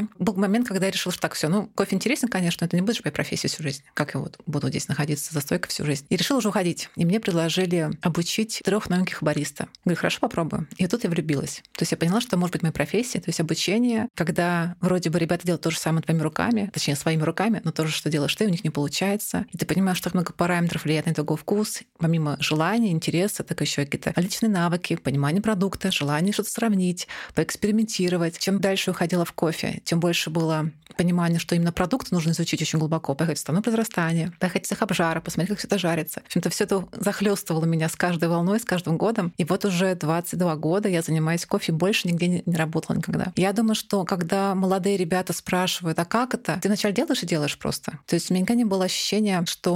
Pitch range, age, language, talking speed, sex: 165-205 Hz, 30-49, Russian, 230 wpm, female